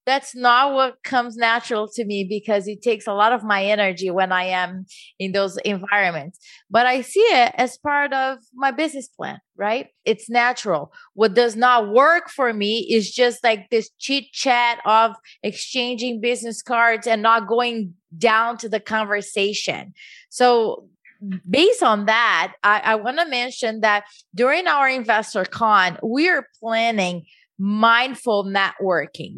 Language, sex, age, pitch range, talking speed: English, female, 20-39, 205-255 Hz, 150 wpm